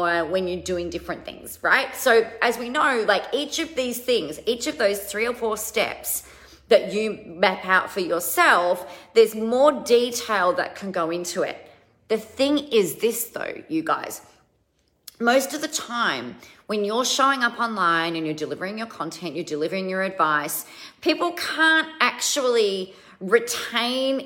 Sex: female